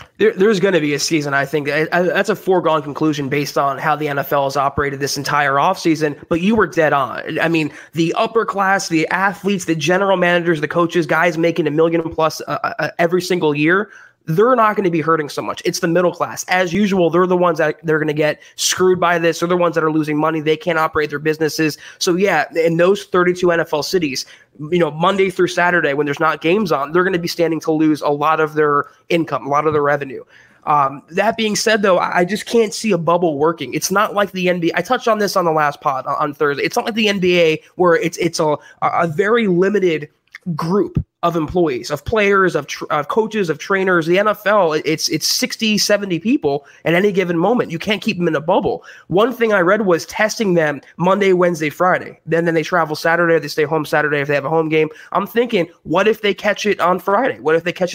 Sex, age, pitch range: male, 20-39, 155-190 Hz